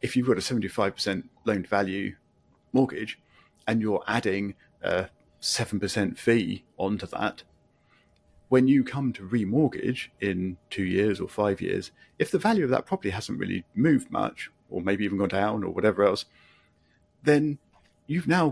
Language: English